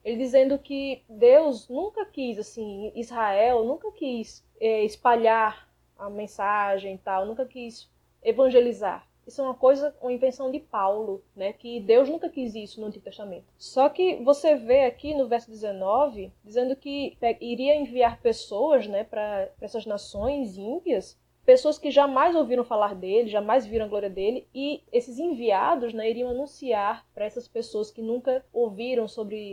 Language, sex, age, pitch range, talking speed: Portuguese, female, 20-39, 215-275 Hz, 160 wpm